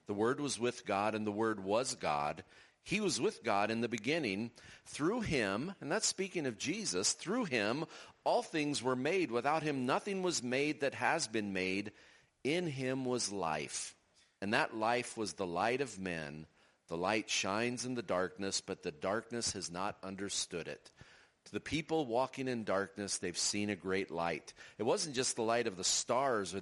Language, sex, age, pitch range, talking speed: English, male, 40-59, 95-130 Hz, 190 wpm